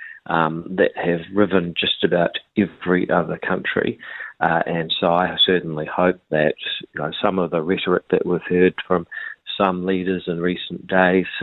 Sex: male